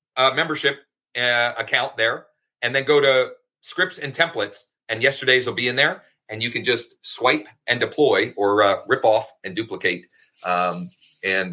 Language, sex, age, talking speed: English, male, 40-59, 170 wpm